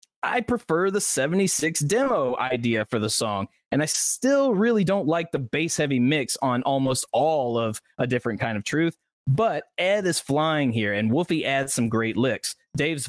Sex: male